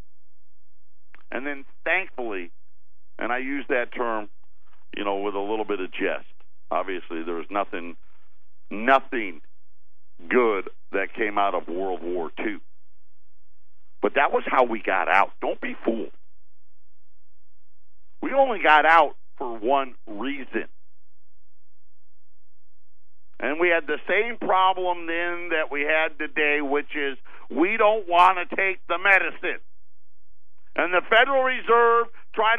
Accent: American